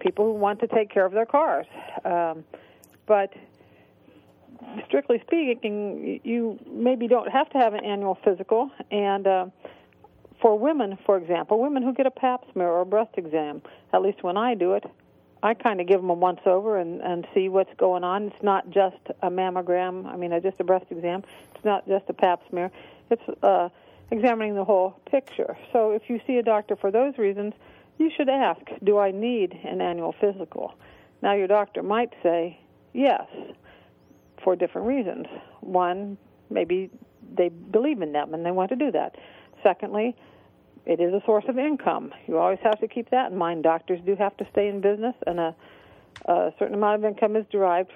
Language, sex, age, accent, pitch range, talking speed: English, female, 50-69, American, 185-235 Hz, 190 wpm